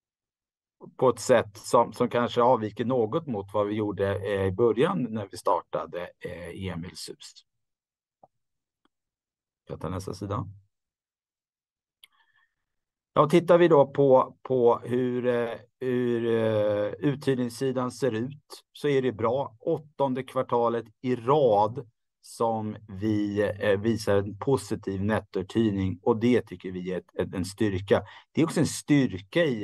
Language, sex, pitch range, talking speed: Swedish, male, 100-130 Hz, 115 wpm